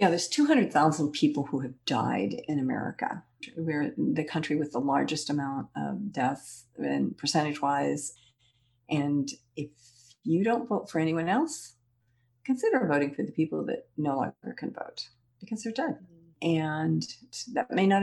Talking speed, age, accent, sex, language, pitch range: 155 wpm, 50-69, American, female, English, 145-205 Hz